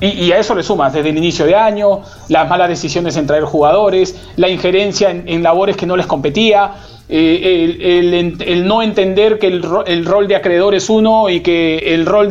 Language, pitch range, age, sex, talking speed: Spanish, 175-210 Hz, 40-59, male, 210 wpm